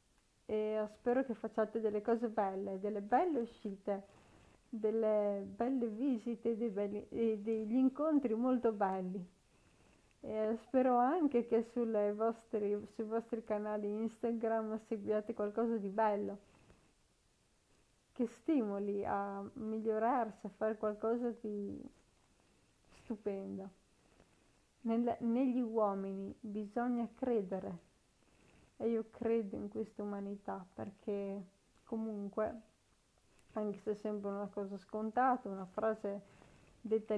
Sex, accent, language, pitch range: female, native, Italian, 205-230 Hz